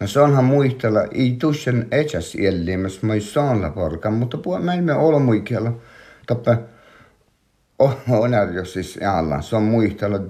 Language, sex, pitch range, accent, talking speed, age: Finnish, male, 95-125 Hz, native, 135 wpm, 60-79